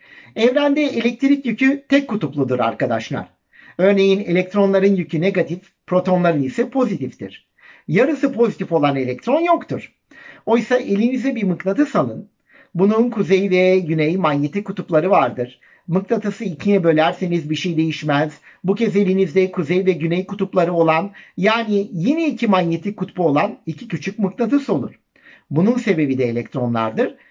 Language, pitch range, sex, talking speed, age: Turkish, 155-210 Hz, male, 125 wpm, 50-69